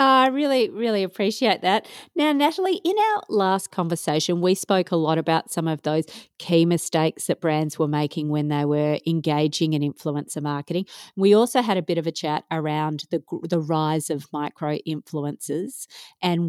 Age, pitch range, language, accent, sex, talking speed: 40-59, 155-195 Hz, English, Australian, female, 175 wpm